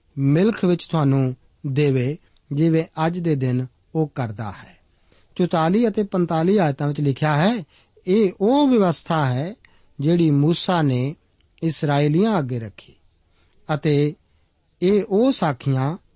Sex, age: male, 50-69